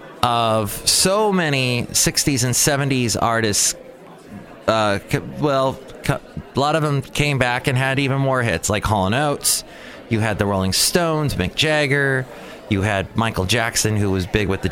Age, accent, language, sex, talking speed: 30-49, American, English, male, 165 wpm